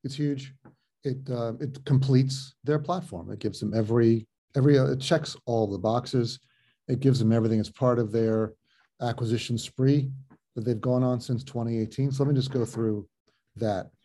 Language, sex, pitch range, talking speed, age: English, male, 110-135 Hz, 180 wpm, 40-59